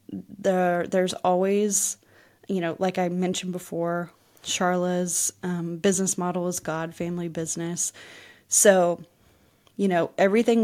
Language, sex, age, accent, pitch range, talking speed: English, female, 20-39, American, 175-195 Hz, 120 wpm